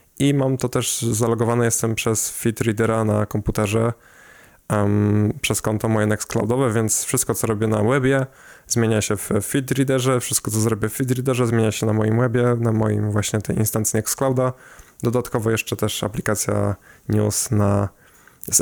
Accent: native